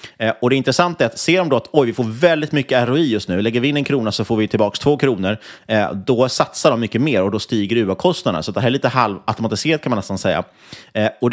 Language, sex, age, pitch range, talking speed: Swedish, male, 30-49, 100-135 Hz, 260 wpm